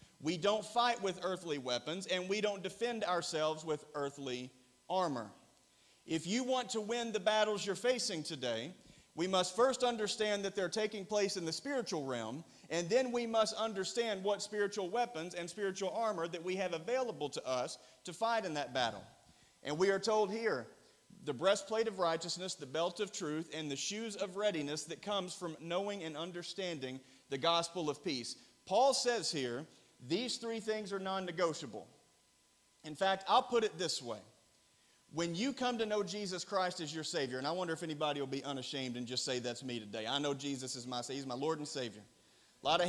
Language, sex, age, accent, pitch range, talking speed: English, male, 40-59, American, 145-210 Hz, 195 wpm